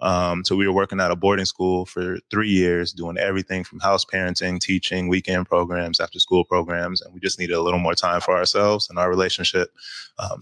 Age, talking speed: 20-39, 215 wpm